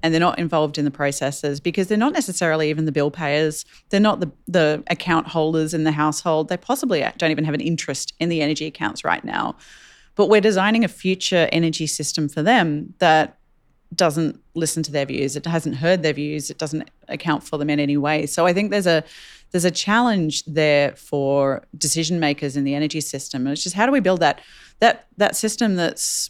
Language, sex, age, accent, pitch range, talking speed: English, female, 30-49, Australian, 145-170 Hz, 210 wpm